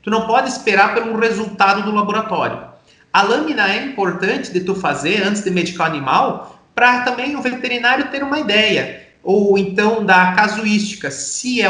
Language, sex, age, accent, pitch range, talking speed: Portuguese, male, 30-49, Brazilian, 195-250 Hz, 170 wpm